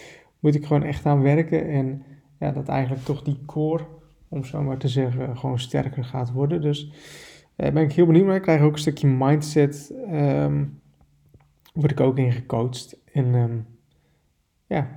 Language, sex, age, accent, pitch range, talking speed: Dutch, male, 20-39, Dutch, 130-150 Hz, 175 wpm